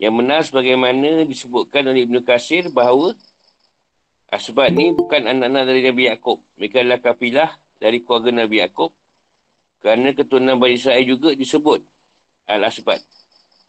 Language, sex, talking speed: Malay, male, 125 wpm